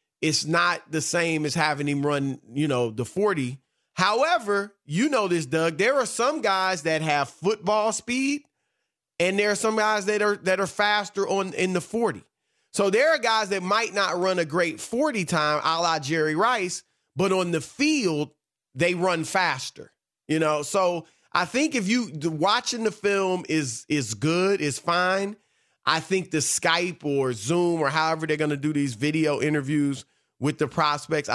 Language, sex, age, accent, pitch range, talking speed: English, male, 30-49, American, 150-205 Hz, 185 wpm